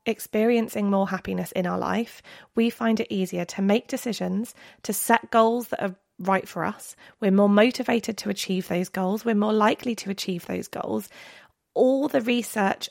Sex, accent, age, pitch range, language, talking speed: female, British, 20-39, 190-230 Hz, English, 175 wpm